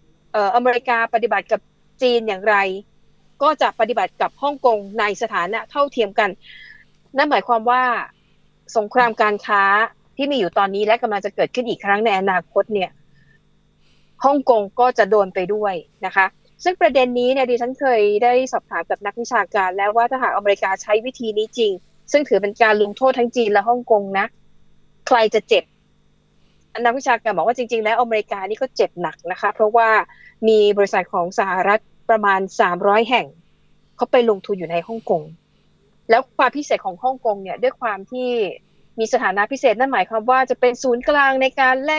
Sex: female